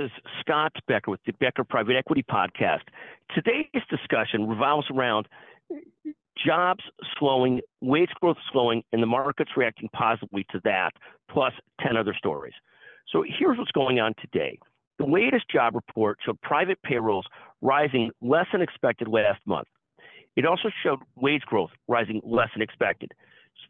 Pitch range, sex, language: 120-155 Hz, male, English